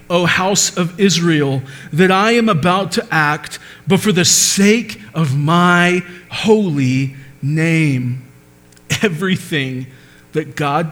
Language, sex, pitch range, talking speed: English, male, 130-195 Hz, 115 wpm